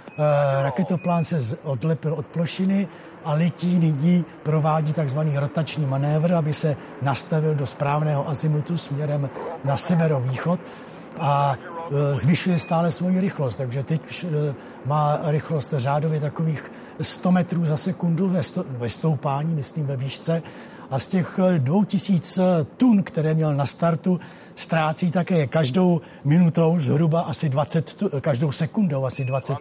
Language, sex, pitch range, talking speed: Czech, male, 140-170 Hz, 125 wpm